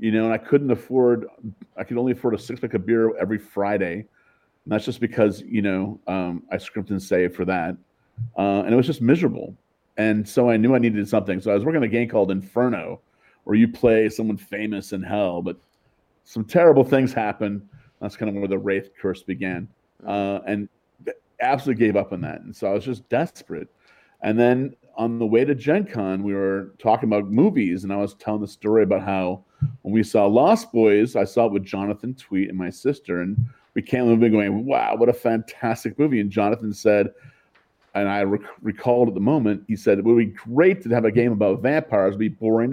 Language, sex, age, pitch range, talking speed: English, male, 40-59, 100-120 Hz, 220 wpm